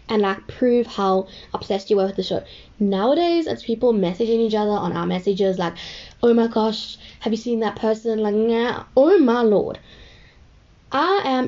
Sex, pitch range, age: female, 200-260 Hz, 10-29